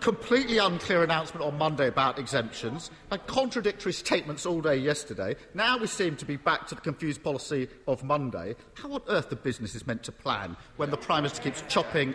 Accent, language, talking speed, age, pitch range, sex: British, English, 200 wpm, 50-69, 150-220 Hz, male